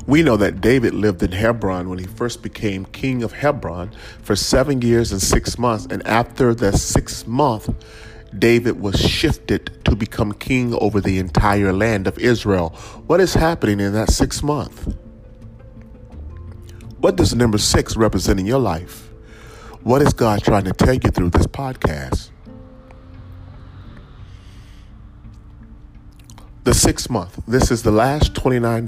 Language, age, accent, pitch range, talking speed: English, 40-59, American, 95-115 Hz, 145 wpm